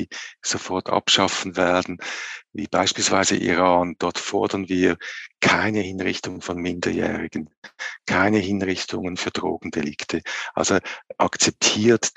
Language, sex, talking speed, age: English, male, 100 wpm, 50-69